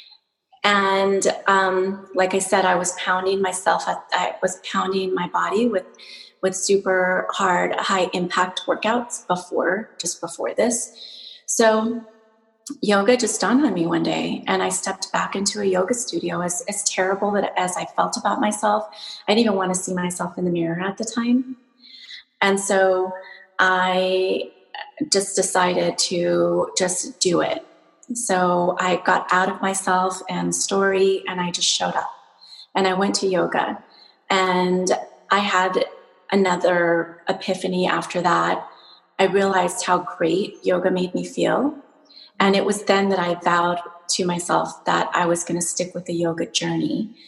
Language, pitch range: English, 175-205 Hz